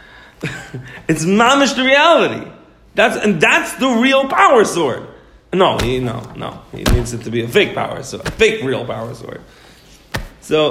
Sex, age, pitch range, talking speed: male, 40-59, 115-165 Hz, 170 wpm